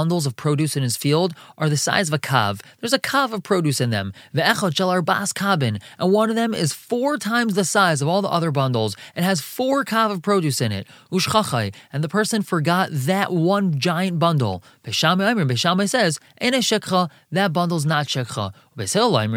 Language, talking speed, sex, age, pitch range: English, 185 wpm, male, 20-39, 140-195 Hz